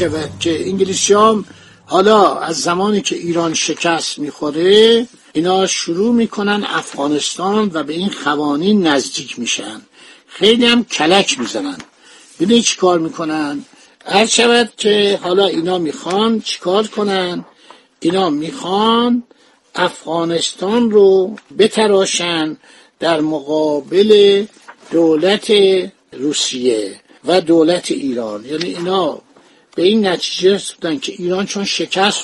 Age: 60-79